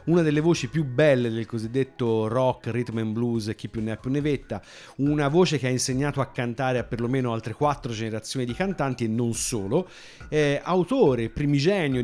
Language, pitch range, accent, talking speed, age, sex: Italian, 110-140 Hz, native, 190 wpm, 50-69, male